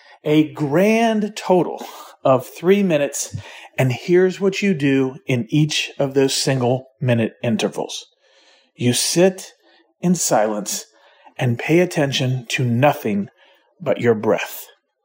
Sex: male